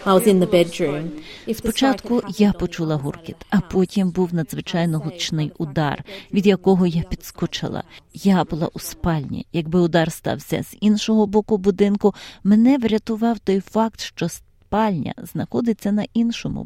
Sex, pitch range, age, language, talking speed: female, 170-215 Hz, 30-49, Ukrainian, 125 wpm